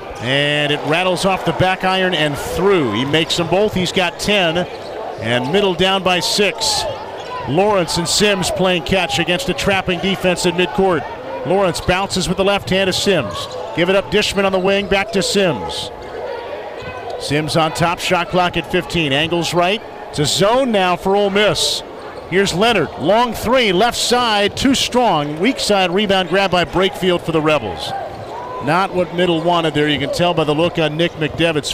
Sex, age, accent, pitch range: male, 50-69, American, 165-195 Hz